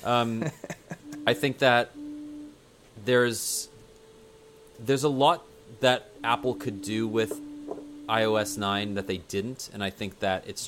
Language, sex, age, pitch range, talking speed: English, male, 30-49, 100-125 Hz, 130 wpm